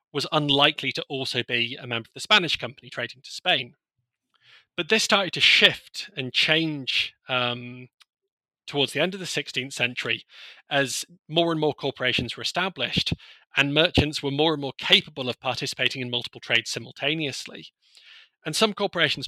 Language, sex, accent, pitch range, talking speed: English, male, British, 125-150 Hz, 160 wpm